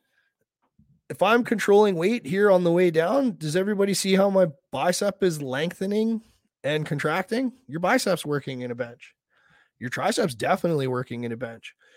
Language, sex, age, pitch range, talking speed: English, male, 20-39, 140-195 Hz, 160 wpm